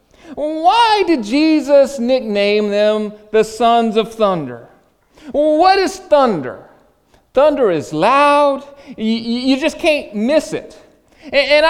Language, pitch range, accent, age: English, 210-280 Hz, American, 40-59